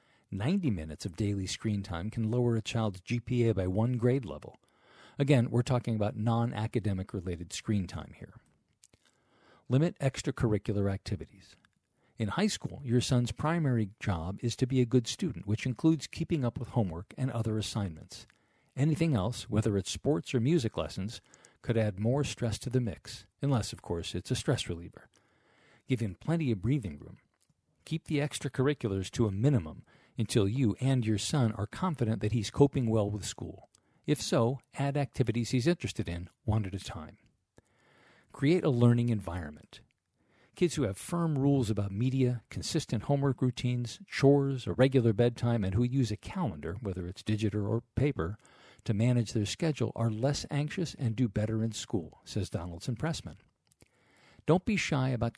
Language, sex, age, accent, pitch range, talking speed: English, male, 50-69, American, 105-135 Hz, 165 wpm